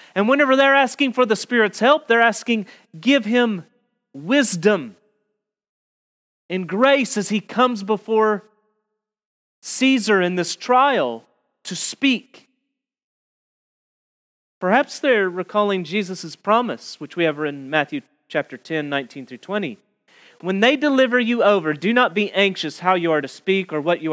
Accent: American